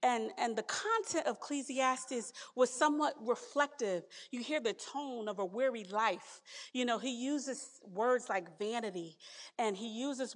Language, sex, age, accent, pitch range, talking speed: English, female, 40-59, American, 225-300 Hz, 155 wpm